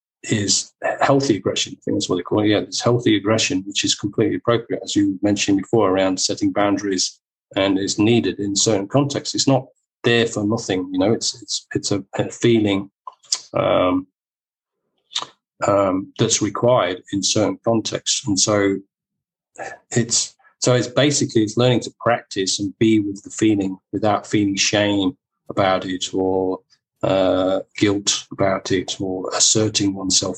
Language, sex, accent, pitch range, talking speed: English, male, British, 95-115 Hz, 155 wpm